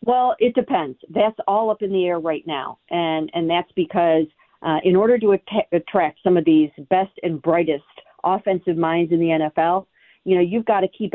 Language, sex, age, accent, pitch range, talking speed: English, female, 40-59, American, 160-195 Hz, 205 wpm